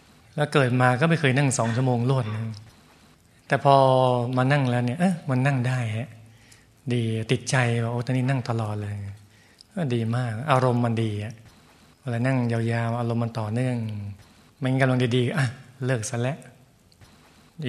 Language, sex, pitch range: Thai, male, 115-135 Hz